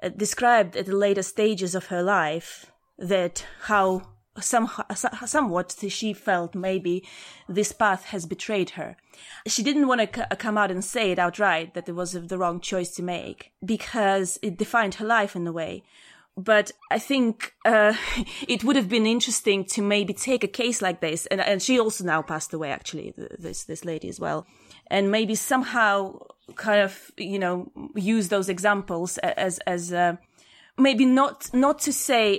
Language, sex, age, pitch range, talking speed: English, female, 20-39, 180-220 Hz, 170 wpm